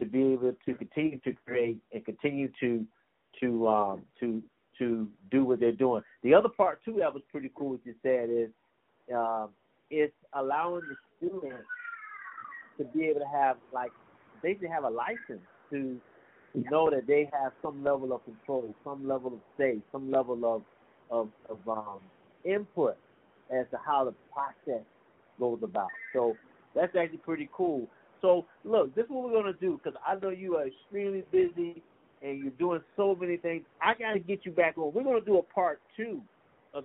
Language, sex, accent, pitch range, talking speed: English, male, American, 125-175 Hz, 185 wpm